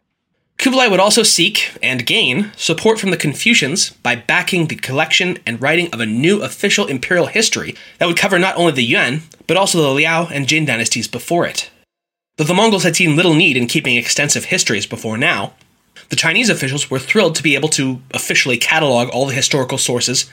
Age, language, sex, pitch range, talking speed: 20-39, English, male, 130-180 Hz, 195 wpm